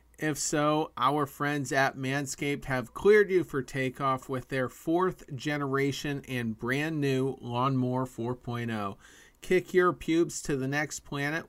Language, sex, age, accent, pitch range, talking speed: English, male, 40-59, American, 130-155 Hz, 140 wpm